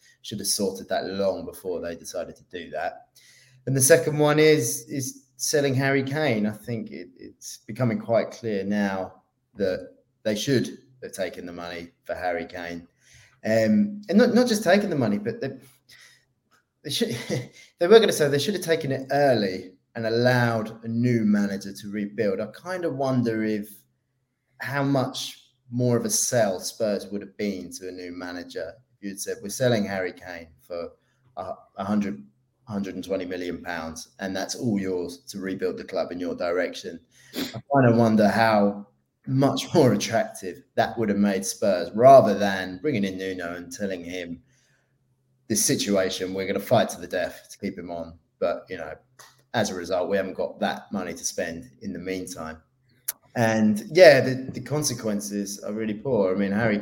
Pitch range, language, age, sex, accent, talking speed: 95-135 Hz, English, 20-39, male, British, 180 wpm